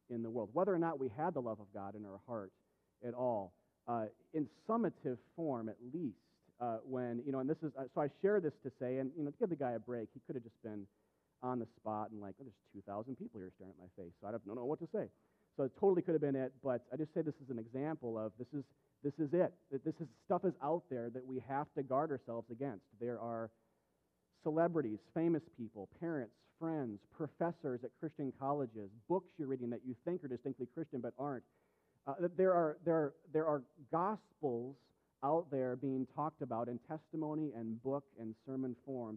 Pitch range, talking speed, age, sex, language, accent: 115-155 Hz, 220 wpm, 40-59, male, English, American